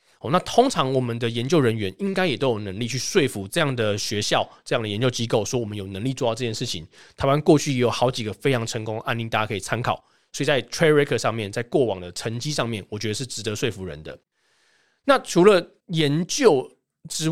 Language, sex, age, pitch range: Chinese, male, 20-39, 115-155 Hz